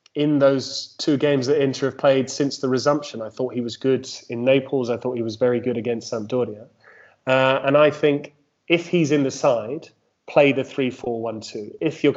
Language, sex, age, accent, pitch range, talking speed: English, male, 30-49, British, 120-140 Hz, 195 wpm